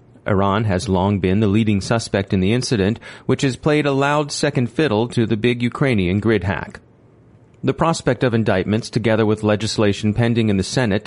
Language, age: English, 30-49